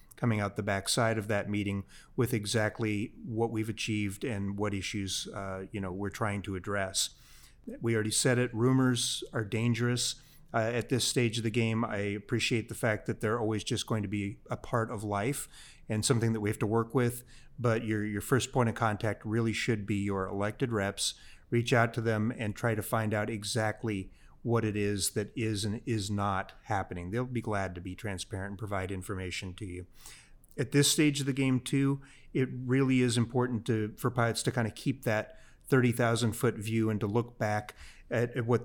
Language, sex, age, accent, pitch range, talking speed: English, male, 30-49, American, 105-120 Hz, 200 wpm